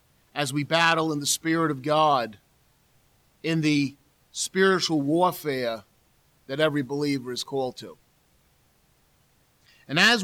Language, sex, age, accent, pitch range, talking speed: English, male, 40-59, American, 135-170 Hz, 115 wpm